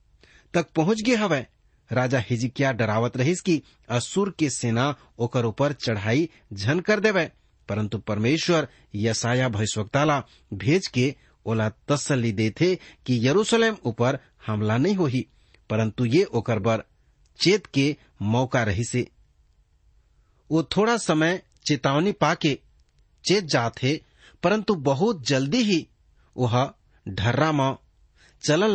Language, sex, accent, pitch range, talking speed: English, male, Indian, 110-150 Hz, 120 wpm